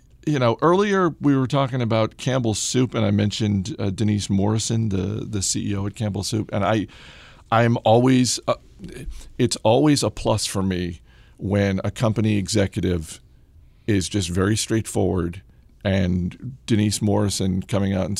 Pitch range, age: 95-115 Hz, 40-59